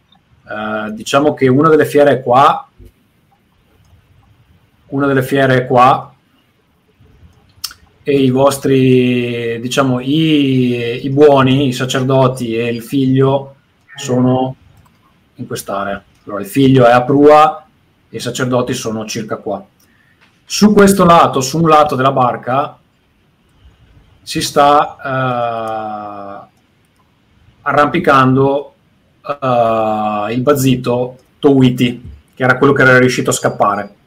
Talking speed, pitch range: 105 wpm, 115-140 Hz